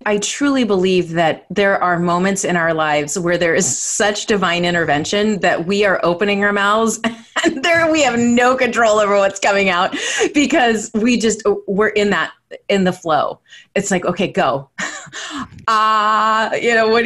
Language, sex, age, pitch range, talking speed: English, female, 30-49, 160-210 Hz, 175 wpm